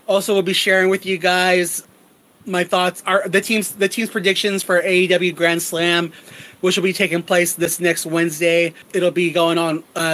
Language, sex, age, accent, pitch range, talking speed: English, male, 30-49, American, 175-200 Hz, 190 wpm